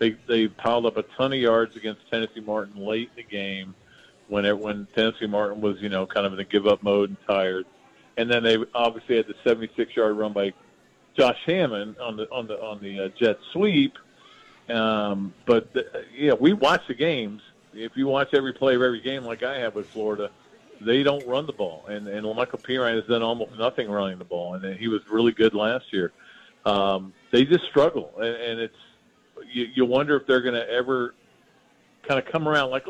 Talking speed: 210 wpm